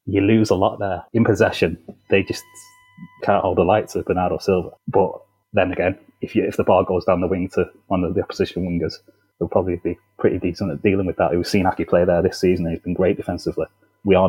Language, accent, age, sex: English, British, 30-49, male